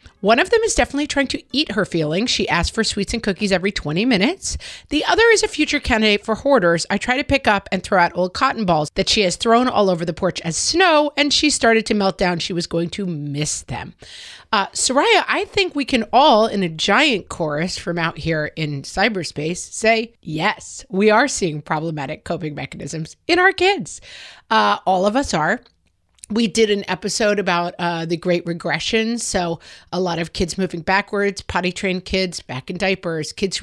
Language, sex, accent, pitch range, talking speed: English, female, American, 170-240 Hz, 205 wpm